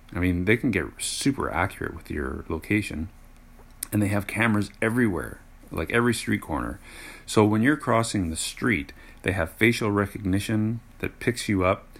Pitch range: 90-110 Hz